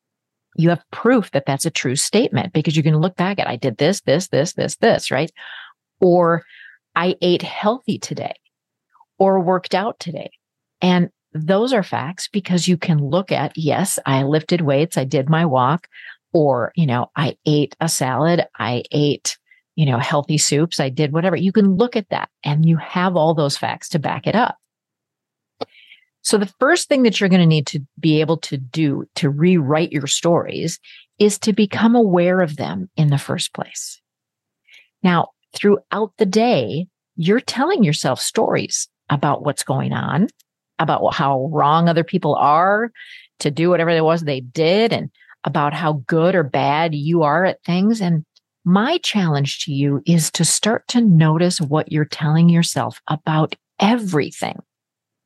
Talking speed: 170 wpm